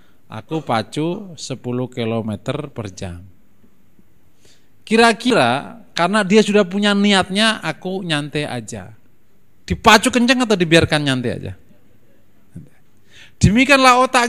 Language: Indonesian